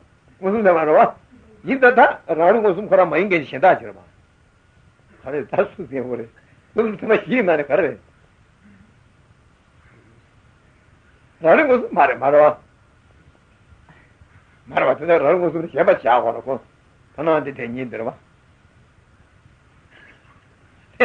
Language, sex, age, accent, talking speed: Italian, male, 60-79, Indian, 110 wpm